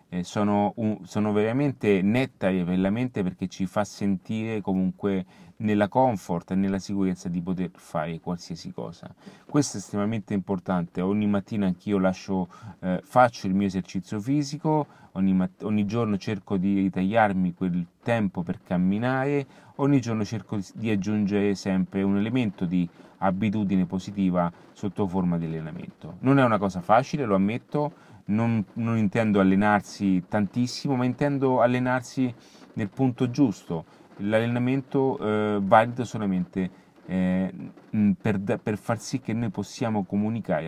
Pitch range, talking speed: 95-115 Hz, 135 wpm